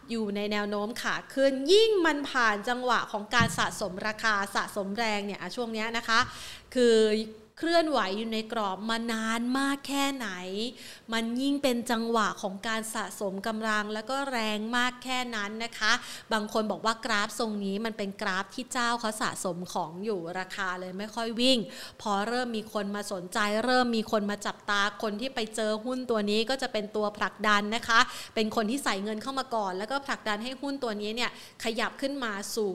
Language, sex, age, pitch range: Thai, female, 30-49, 205-250 Hz